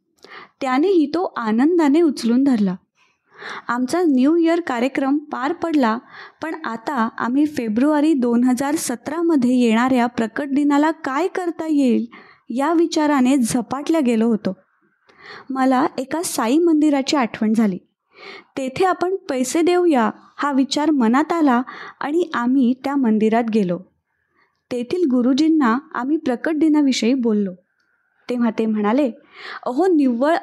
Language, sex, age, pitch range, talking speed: Marathi, female, 20-39, 240-310 Hz, 115 wpm